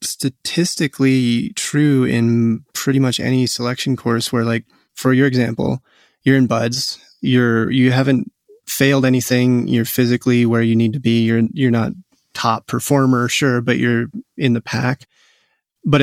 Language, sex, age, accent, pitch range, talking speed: English, male, 20-39, American, 120-135 Hz, 150 wpm